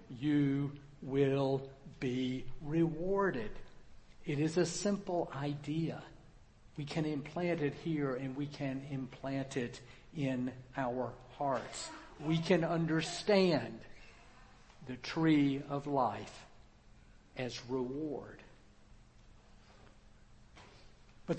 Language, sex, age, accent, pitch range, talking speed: English, male, 60-79, American, 135-180 Hz, 90 wpm